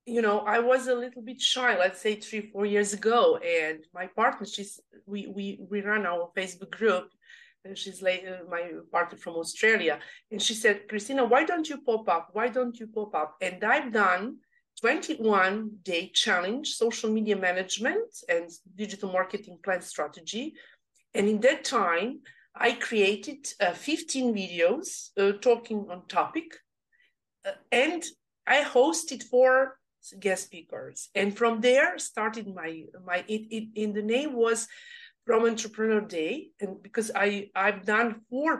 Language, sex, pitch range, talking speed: English, female, 190-240 Hz, 155 wpm